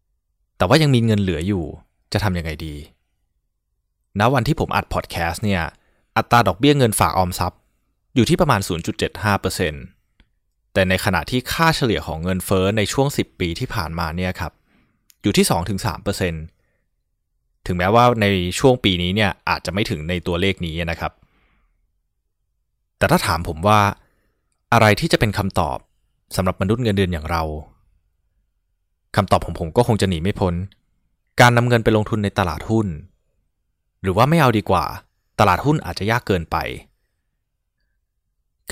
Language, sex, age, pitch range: Thai, male, 20-39, 85-110 Hz